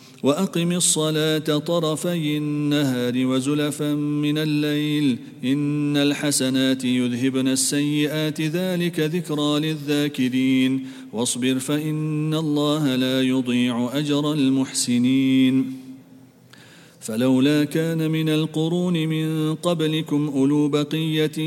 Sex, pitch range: male, 130-155 Hz